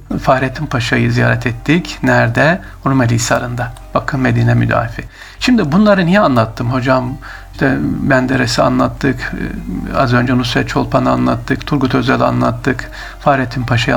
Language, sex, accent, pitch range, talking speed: Turkish, male, native, 120-150 Hz, 120 wpm